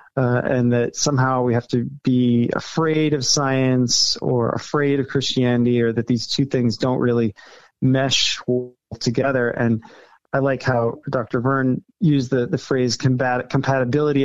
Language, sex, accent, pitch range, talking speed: English, male, American, 125-150 Hz, 145 wpm